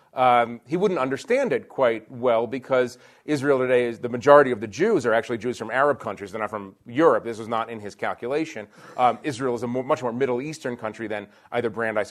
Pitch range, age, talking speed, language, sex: 115-135 Hz, 30-49, 225 wpm, English, male